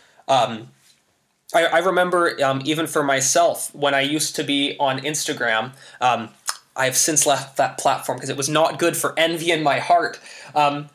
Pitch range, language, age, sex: 145-185 Hz, English, 20-39, male